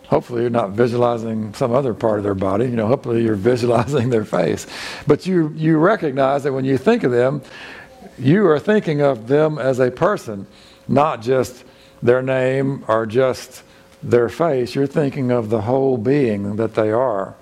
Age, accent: 60-79, American